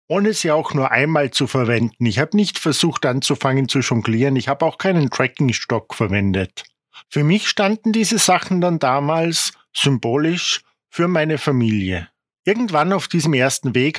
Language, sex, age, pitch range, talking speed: German, male, 50-69, 125-175 Hz, 155 wpm